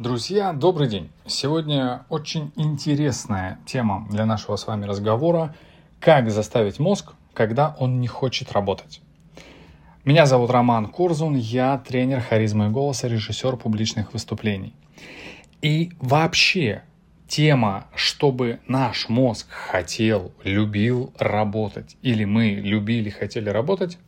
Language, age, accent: Russian, 30-49, native